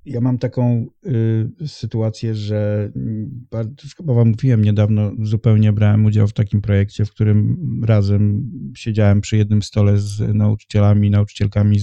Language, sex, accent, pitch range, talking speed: Polish, male, native, 100-120 Hz, 130 wpm